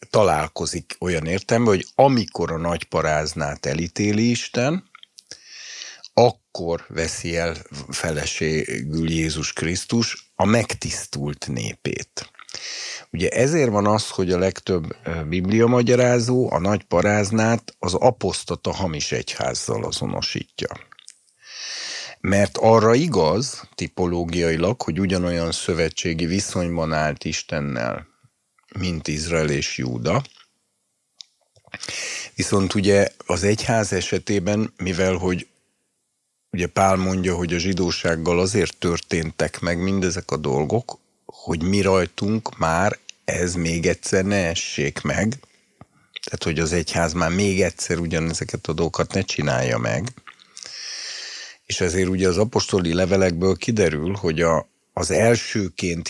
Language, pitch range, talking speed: Hungarian, 85-100 Hz, 110 wpm